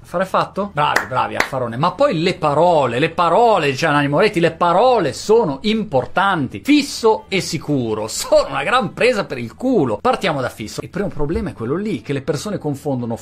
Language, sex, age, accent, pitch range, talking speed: Italian, male, 30-49, native, 125-200 Hz, 180 wpm